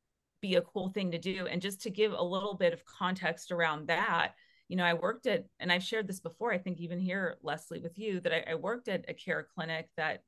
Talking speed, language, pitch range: 250 wpm, English, 165-195 Hz